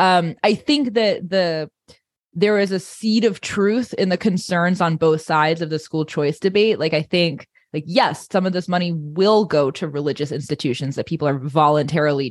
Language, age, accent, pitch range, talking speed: English, 20-39, American, 150-180 Hz, 195 wpm